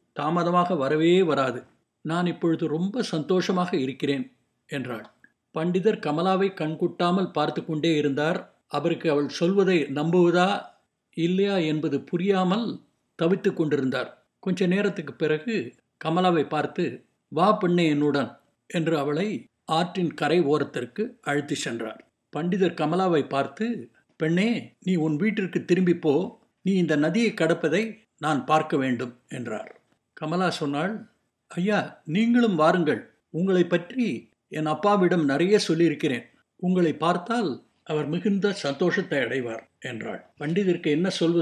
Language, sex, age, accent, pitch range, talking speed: Tamil, male, 60-79, native, 150-190 Hz, 110 wpm